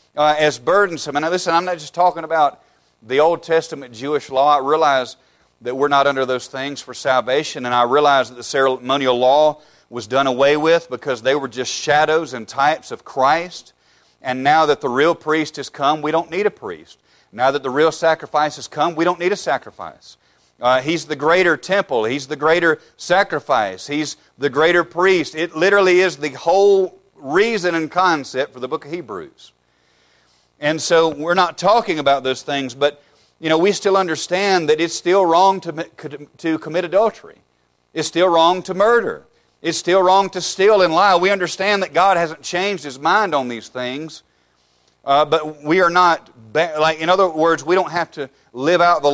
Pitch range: 135-175 Hz